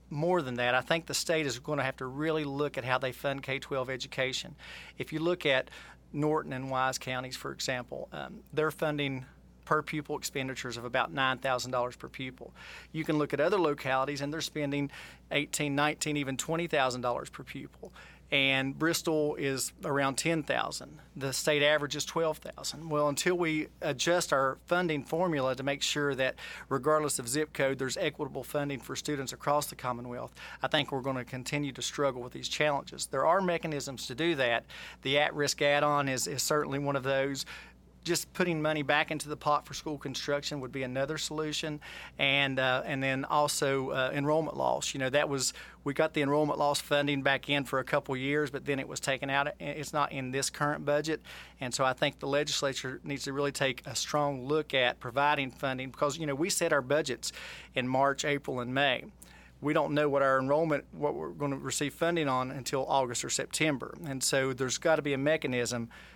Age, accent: 40-59, American